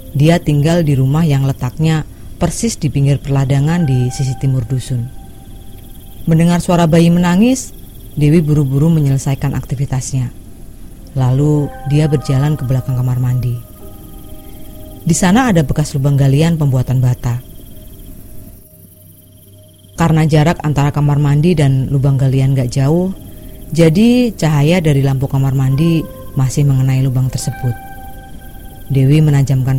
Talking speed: 120 wpm